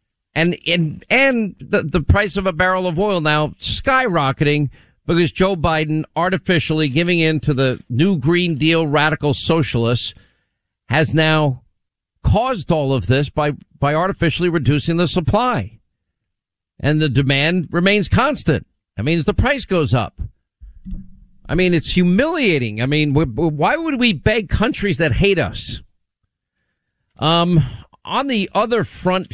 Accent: American